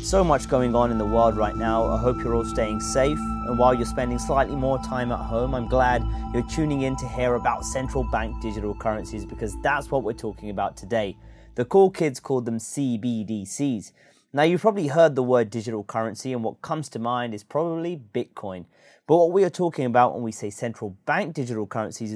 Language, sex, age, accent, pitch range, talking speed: English, male, 30-49, British, 110-140 Hz, 210 wpm